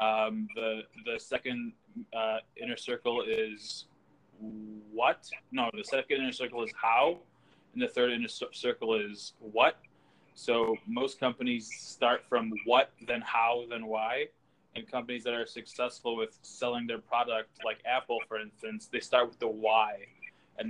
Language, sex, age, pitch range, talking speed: English, male, 20-39, 110-130 Hz, 150 wpm